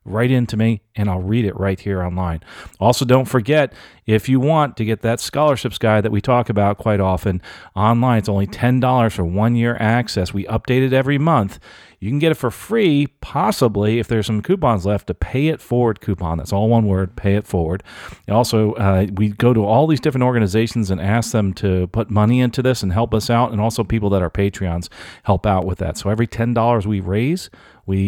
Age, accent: 40-59, American